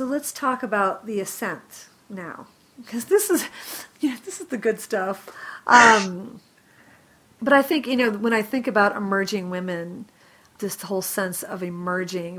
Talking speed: 165 wpm